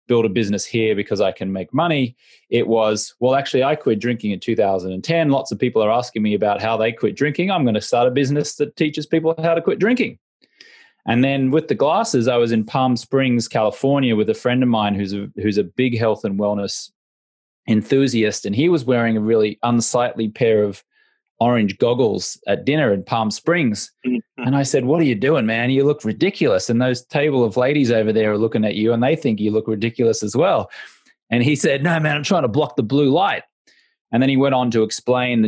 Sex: male